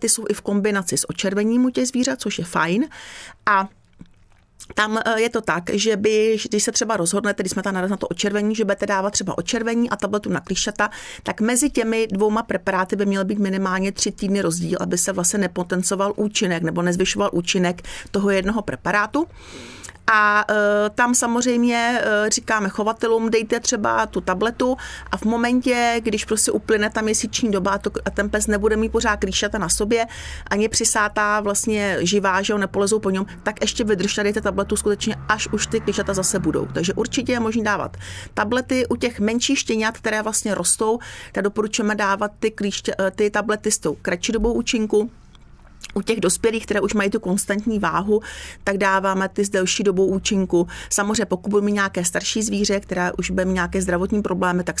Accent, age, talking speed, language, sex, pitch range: native, 40-59, 185 wpm, Czech, female, 195-225 Hz